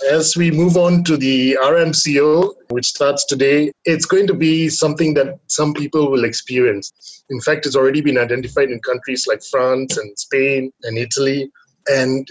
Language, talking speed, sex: English, 170 wpm, male